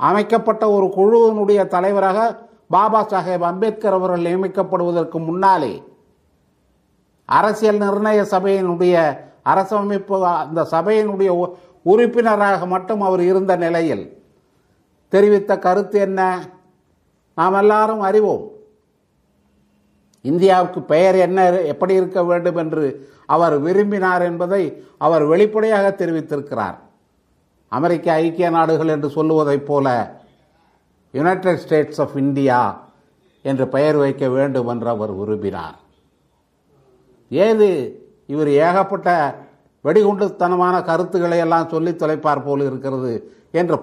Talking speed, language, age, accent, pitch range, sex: 95 wpm, Tamil, 50-69, native, 150-195 Hz, male